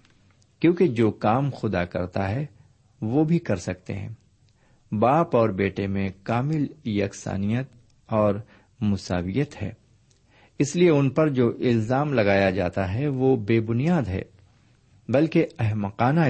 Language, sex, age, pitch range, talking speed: Urdu, male, 50-69, 100-130 Hz, 130 wpm